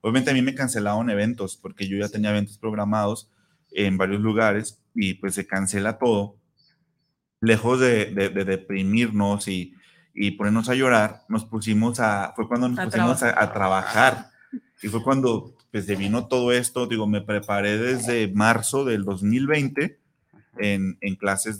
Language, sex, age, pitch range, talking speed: Spanish, male, 30-49, 100-120 Hz, 160 wpm